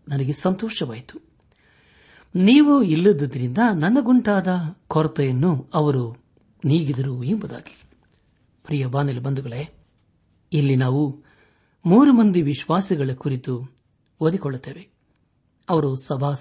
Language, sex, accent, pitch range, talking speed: Kannada, male, native, 130-170 Hz, 75 wpm